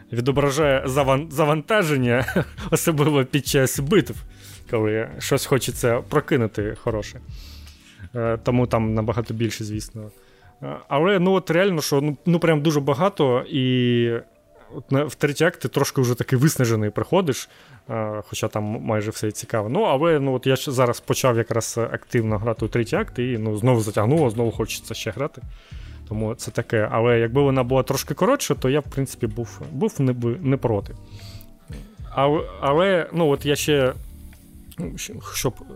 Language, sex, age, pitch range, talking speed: Ukrainian, male, 20-39, 115-140 Hz, 145 wpm